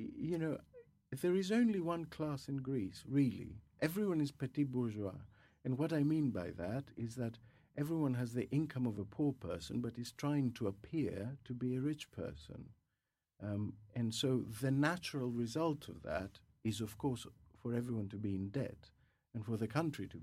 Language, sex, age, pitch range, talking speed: English, male, 50-69, 100-135 Hz, 185 wpm